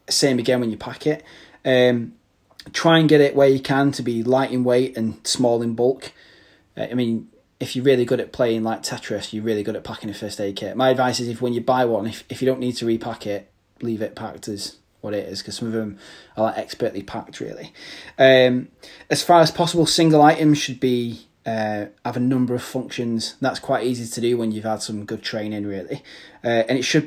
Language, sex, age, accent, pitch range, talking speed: English, male, 30-49, British, 115-130 Hz, 235 wpm